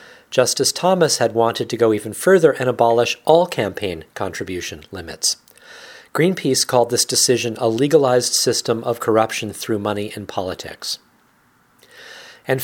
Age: 40-59